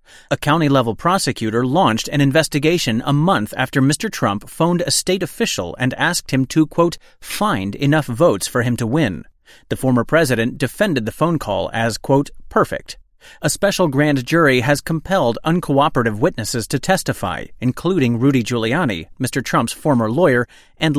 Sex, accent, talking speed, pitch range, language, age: male, American, 155 wpm, 120-160 Hz, English, 30-49